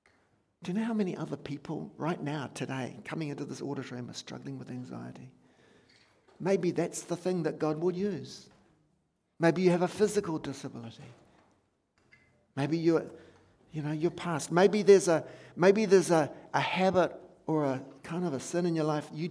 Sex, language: male, English